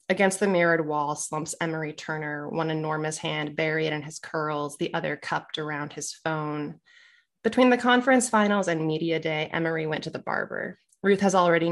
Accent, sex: American, female